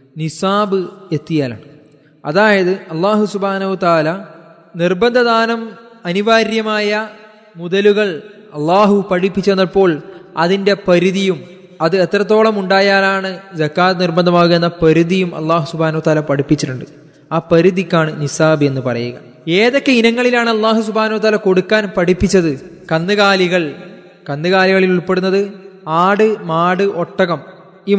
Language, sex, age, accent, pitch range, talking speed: Malayalam, male, 20-39, native, 160-200 Hz, 90 wpm